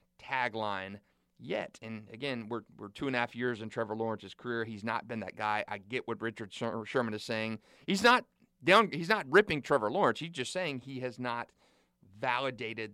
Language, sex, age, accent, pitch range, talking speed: English, male, 30-49, American, 110-140 Hz, 195 wpm